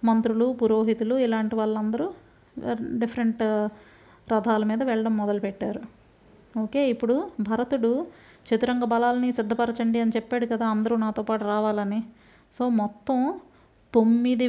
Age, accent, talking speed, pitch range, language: 30-49, native, 105 wpm, 220-245 Hz, Telugu